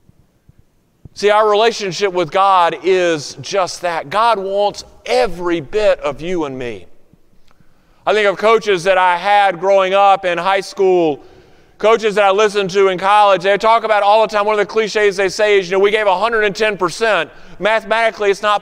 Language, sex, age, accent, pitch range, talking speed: English, male, 40-59, American, 175-220 Hz, 180 wpm